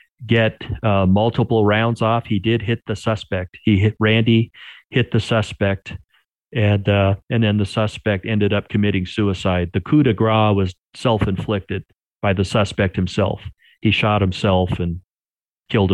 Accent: American